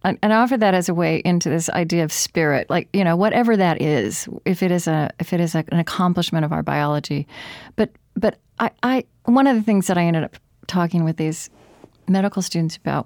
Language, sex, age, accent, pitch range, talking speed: English, female, 40-59, American, 160-200 Hz, 220 wpm